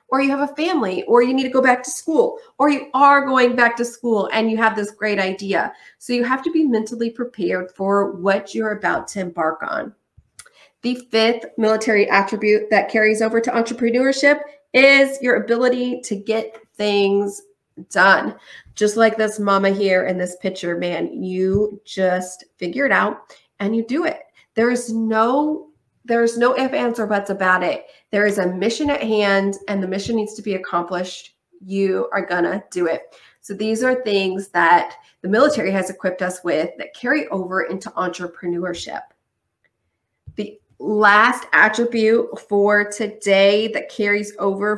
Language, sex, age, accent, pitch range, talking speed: English, female, 30-49, American, 195-240 Hz, 170 wpm